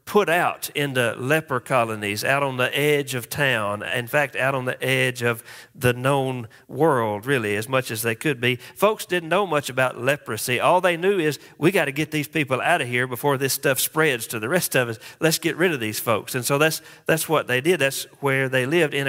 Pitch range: 130-175 Hz